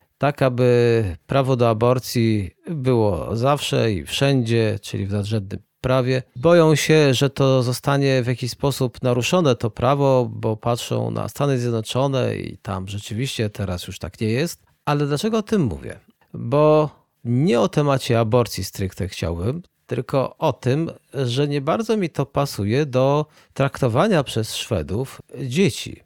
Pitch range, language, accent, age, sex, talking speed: 110-145 Hz, Polish, native, 40-59, male, 145 wpm